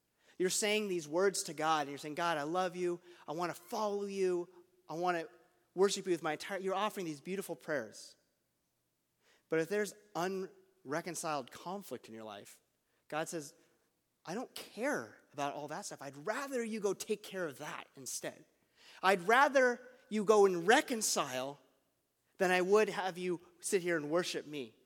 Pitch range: 155-205 Hz